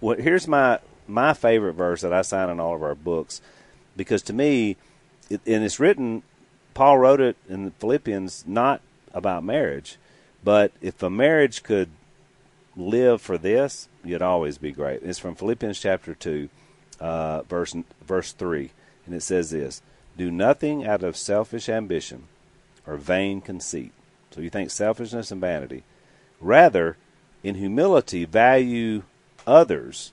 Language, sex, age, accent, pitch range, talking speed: English, male, 40-59, American, 85-115 Hz, 145 wpm